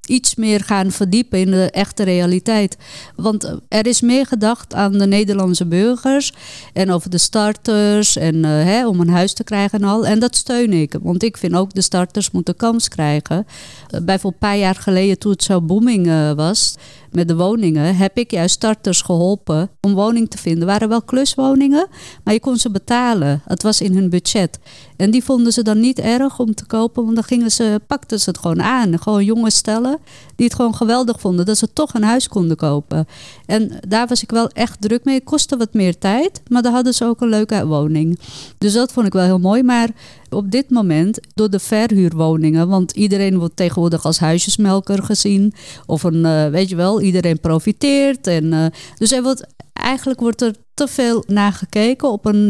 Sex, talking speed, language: female, 200 wpm, Dutch